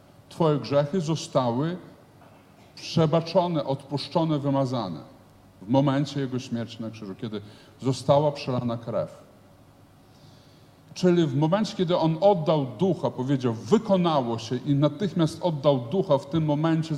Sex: male